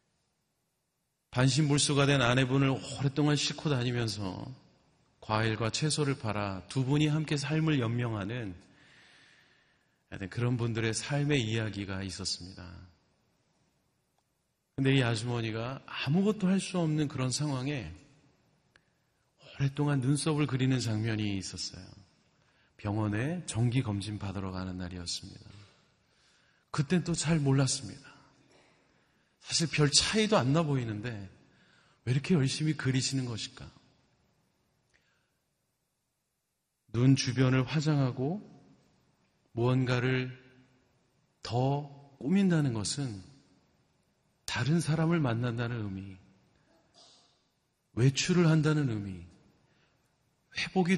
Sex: male